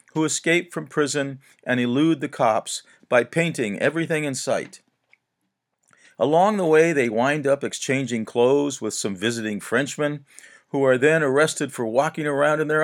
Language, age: English, 50-69